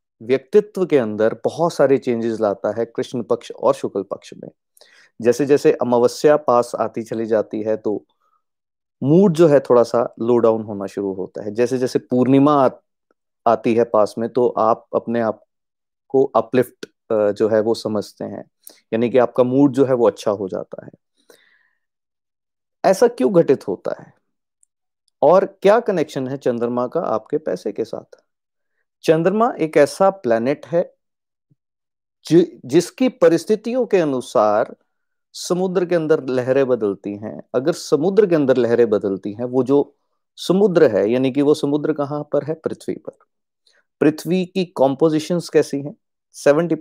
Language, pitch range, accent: Hindi, 120-170 Hz, native